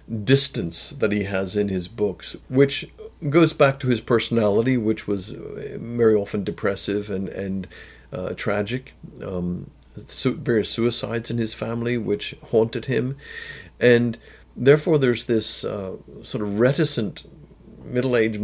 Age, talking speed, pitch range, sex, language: 50-69, 135 wpm, 105-130 Hz, male, English